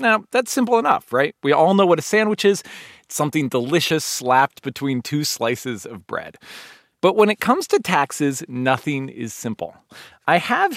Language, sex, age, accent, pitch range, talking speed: English, male, 40-59, American, 140-215 Hz, 180 wpm